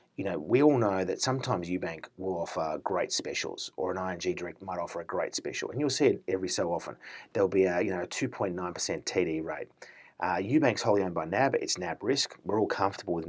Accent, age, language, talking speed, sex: Australian, 30-49, English, 235 wpm, male